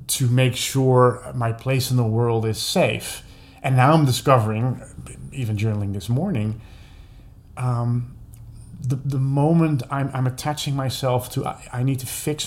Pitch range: 115-135 Hz